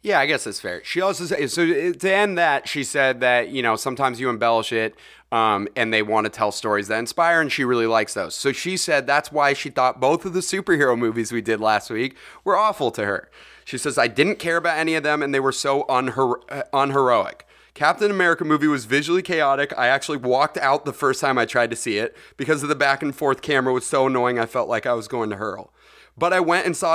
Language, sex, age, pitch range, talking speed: English, male, 30-49, 125-155 Hz, 245 wpm